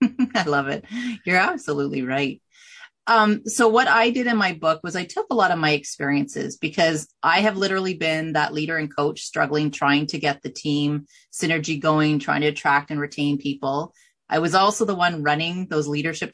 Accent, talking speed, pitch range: American, 195 wpm, 150-205 Hz